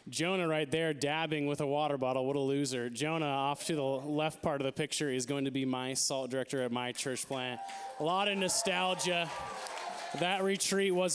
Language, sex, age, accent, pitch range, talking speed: English, male, 20-39, American, 135-190 Hz, 205 wpm